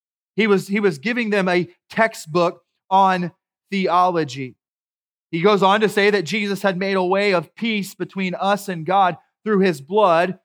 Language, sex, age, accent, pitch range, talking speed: English, male, 30-49, American, 165-205 Hz, 165 wpm